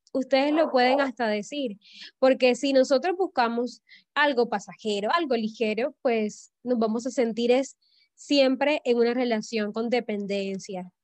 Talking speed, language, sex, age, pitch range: 135 wpm, Spanish, female, 10-29, 215-285 Hz